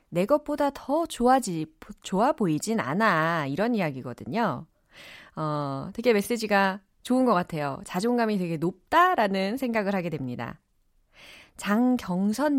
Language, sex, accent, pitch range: Korean, female, native, 170-250 Hz